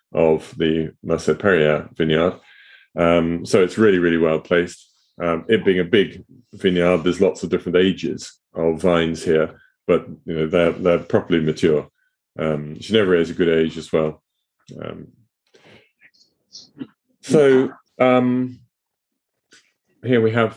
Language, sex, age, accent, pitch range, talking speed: English, male, 30-49, British, 85-115 Hz, 140 wpm